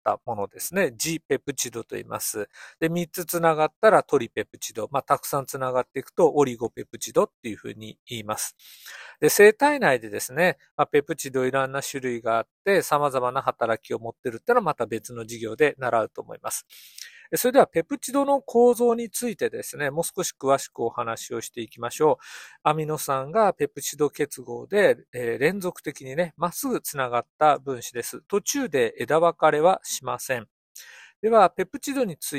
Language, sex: Japanese, male